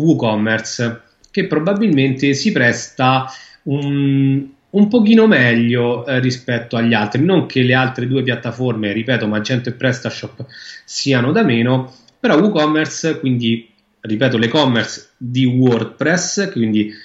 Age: 30-49